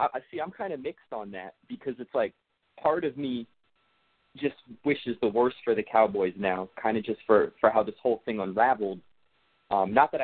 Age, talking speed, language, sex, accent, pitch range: 20-39, 205 wpm, English, male, American, 105-125 Hz